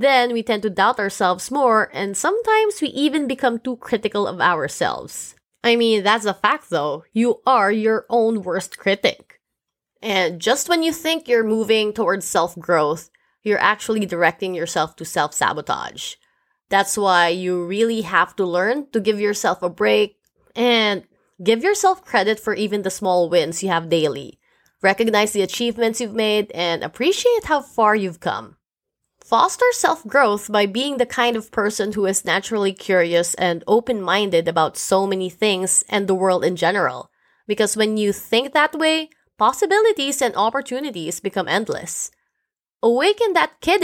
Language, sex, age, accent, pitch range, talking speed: English, female, 20-39, Filipino, 190-255 Hz, 155 wpm